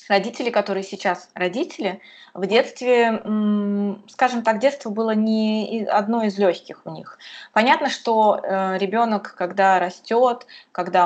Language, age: Russian, 20-39